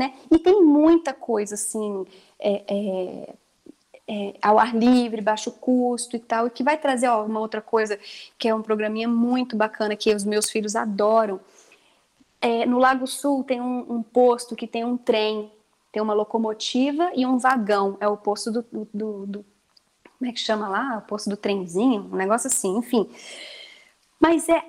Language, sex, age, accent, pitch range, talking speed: Portuguese, female, 20-39, Brazilian, 210-260 Hz, 180 wpm